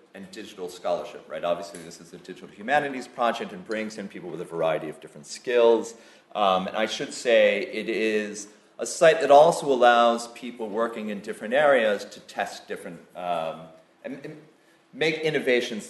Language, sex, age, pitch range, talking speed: English, male, 30-49, 105-155 Hz, 175 wpm